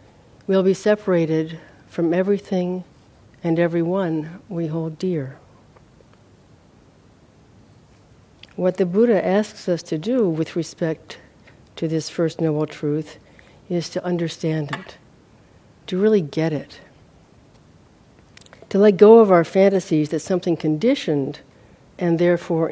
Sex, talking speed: female, 115 wpm